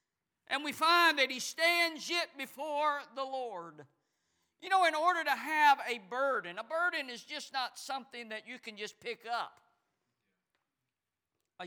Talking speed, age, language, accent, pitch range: 160 wpm, 50-69, English, American, 260-330 Hz